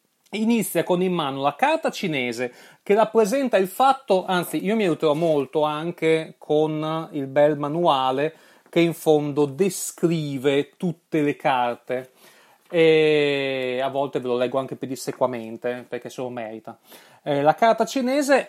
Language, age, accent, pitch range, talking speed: Italian, 30-49, native, 135-195 Hz, 140 wpm